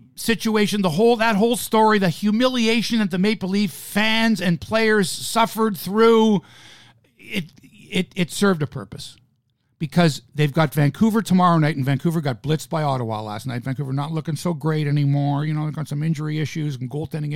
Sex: male